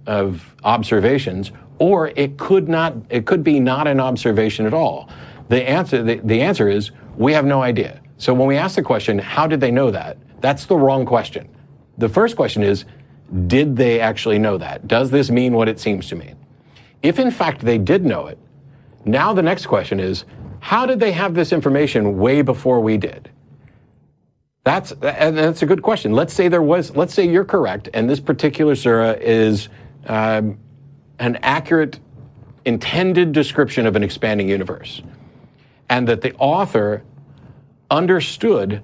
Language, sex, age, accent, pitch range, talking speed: English, male, 50-69, American, 115-150 Hz, 170 wpm